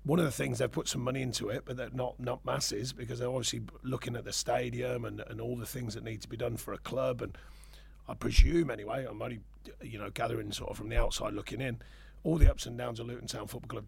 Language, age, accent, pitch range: English, 40-59, British, 110-130 Hz